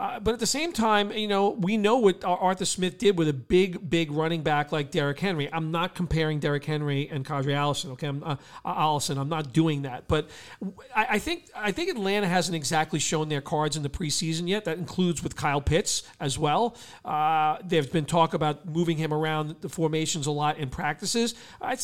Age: 40-59